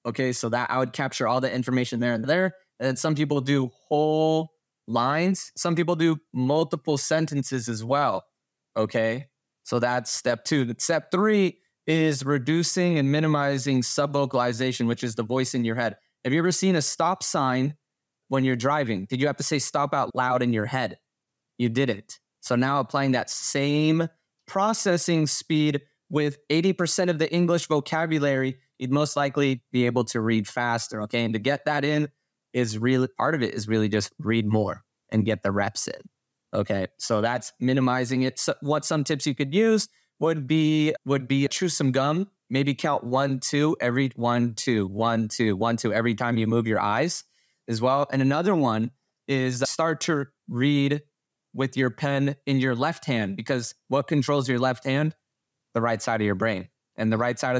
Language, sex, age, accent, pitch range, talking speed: English, male, 20-39, American, 120-150 Hz, 185 wpm